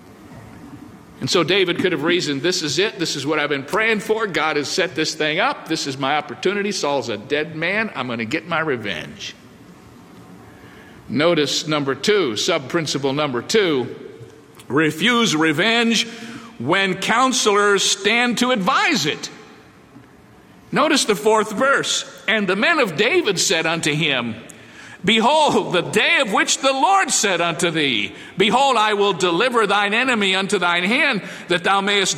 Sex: male